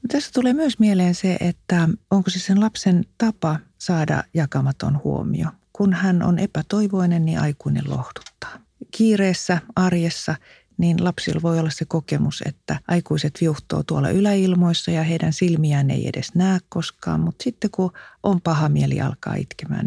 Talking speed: 150 wpm